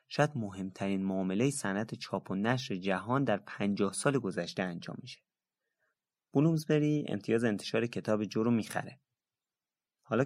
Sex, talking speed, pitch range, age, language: male, 135 wpm, 95-125 Hz, 30-49, Persian